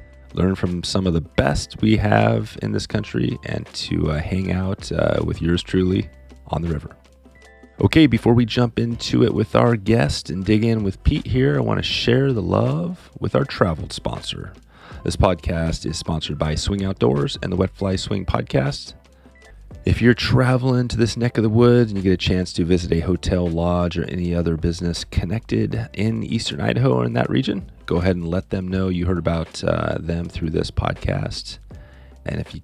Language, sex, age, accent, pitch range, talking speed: English, male, 30-49, American, 80-105 Hz, 200 wpm